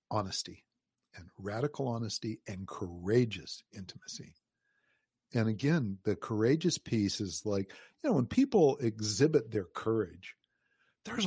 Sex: male